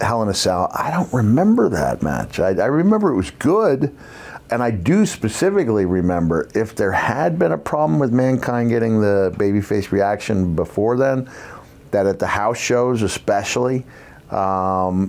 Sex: male